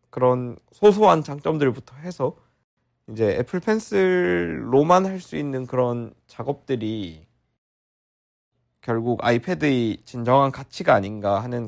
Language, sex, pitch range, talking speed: English, male, 100-140 Hz, 85 wpm